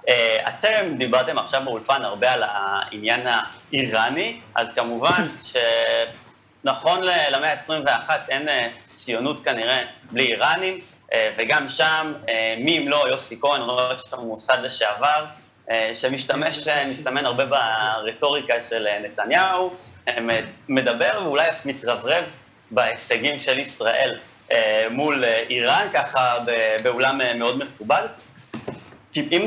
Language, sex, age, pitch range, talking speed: Hebrew, male, 30-49, 115-165 Hz, 105 wpm